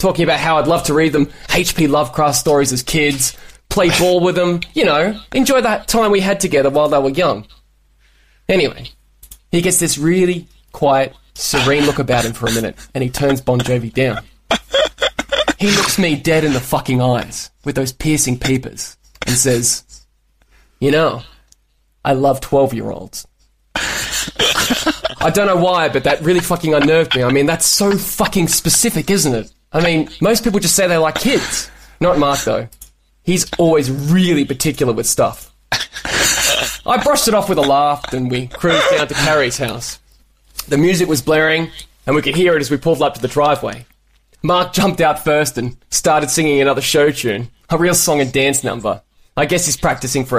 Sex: male